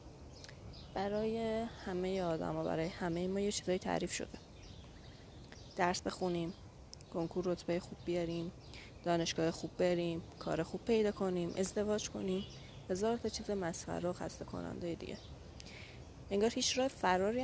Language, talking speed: Persian, 125 wpm